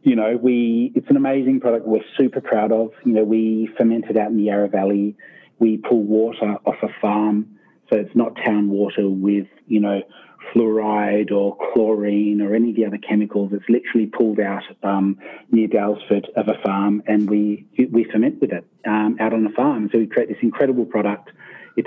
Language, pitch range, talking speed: English, 105-125 Hz, 200 wpm